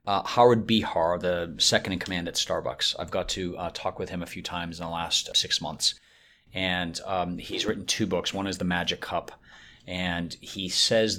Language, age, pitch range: English, 40-59, 90-105 Hz